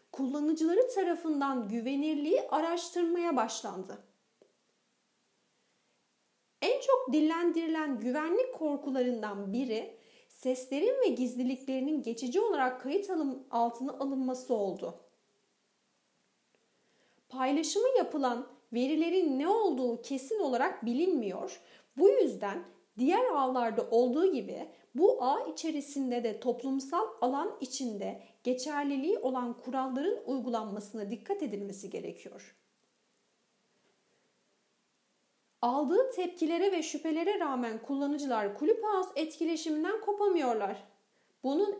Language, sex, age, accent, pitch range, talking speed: Turkish, female, 40-59, native, 250-365 Hz, 85 wpm